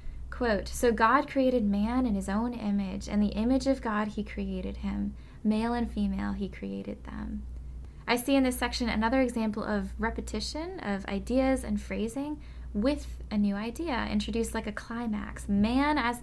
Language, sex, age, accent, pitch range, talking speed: English, female, 10-29, American, 195-240 Hz, 170 wpm